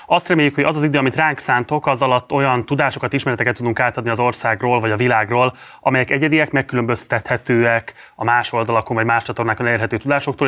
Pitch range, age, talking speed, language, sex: 115-135 Hz, 20-39, 185 wpm, Hungarian, male